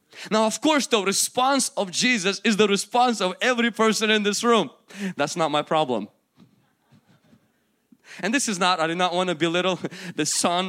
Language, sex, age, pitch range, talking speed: English, male, 20-39, 145-215 Hz, 180 wpm